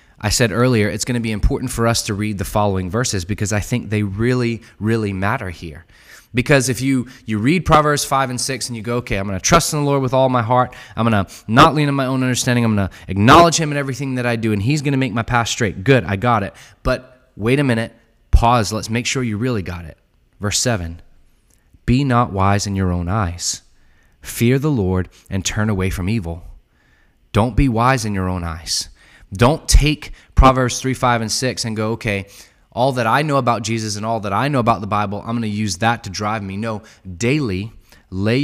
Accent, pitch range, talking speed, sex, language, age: American, 100-130 Hz, 225 wpm, male, English, 20-39